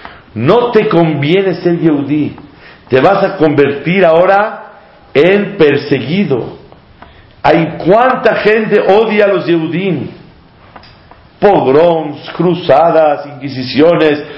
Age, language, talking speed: 50-69, Spanish, 90 wpm